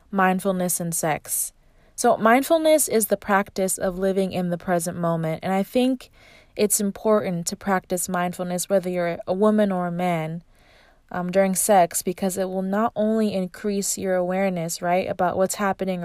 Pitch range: 180-210 Hz